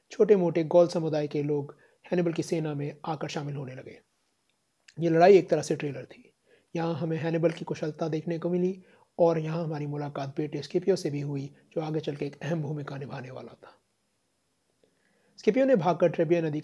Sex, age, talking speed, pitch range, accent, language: male, 30-49, 145 wpm, 150-180 Hz, native, Hindi